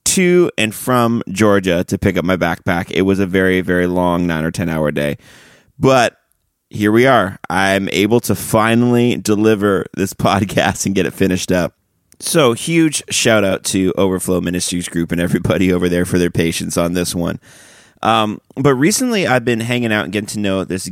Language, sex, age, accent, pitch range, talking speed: English, male, 30-49, American, 90-105 Hz, 185 wpm